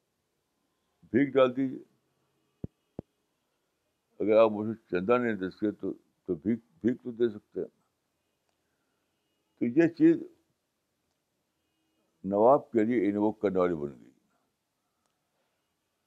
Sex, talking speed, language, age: male, 105 wpm, Urdu, 60-79